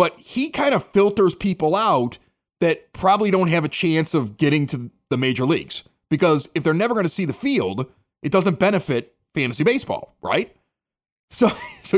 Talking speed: 180 wpm